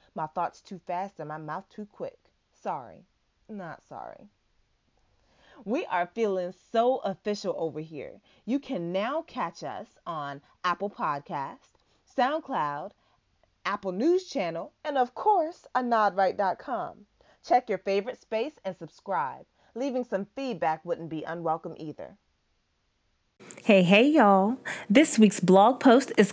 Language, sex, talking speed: English, female, 130 wpm